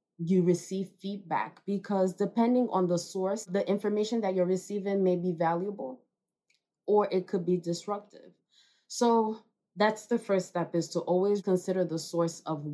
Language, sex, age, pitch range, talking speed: English, female, 20-39, 170-200 Hz, 155 wpm